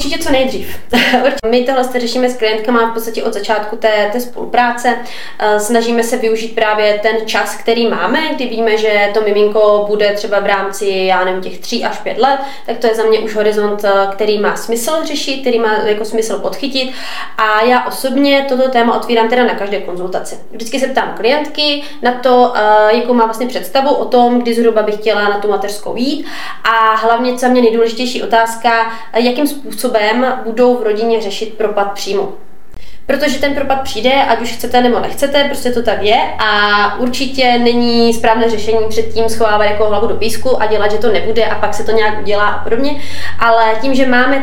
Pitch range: 210-245 Hz